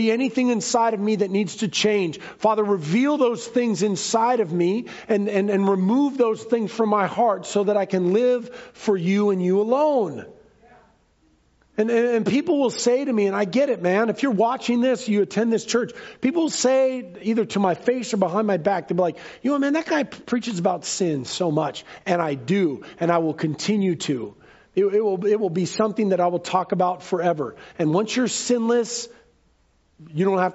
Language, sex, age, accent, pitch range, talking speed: English, male, 40-59, American, 180-235 Hz, 205 wpm